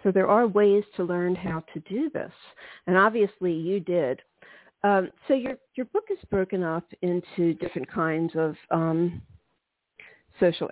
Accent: American